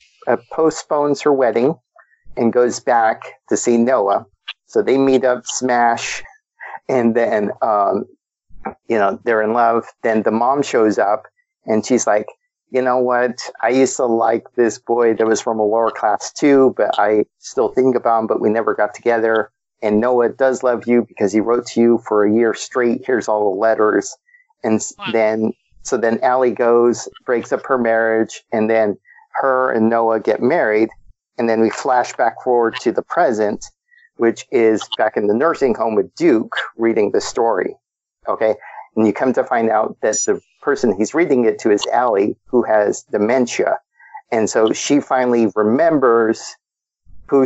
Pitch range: 110-135 Hz